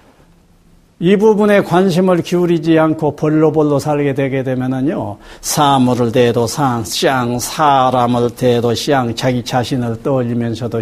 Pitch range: 125-195 Hz